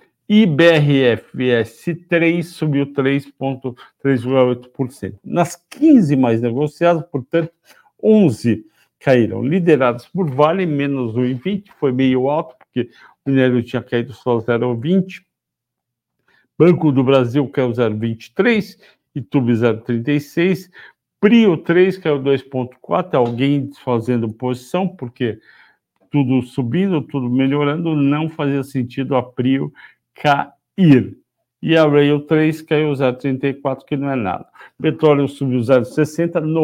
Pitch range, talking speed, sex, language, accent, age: 125-155 Hz, 105 wpm, male, Portuguese, Brazilian, 60-79